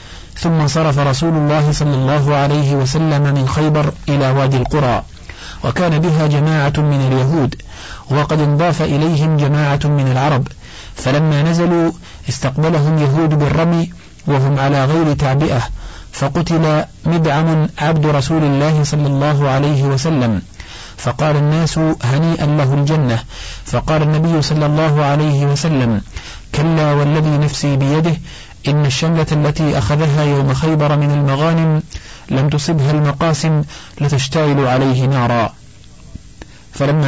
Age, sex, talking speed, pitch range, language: 50-69, male, 115 wpm, 135-155 Hz, Arabic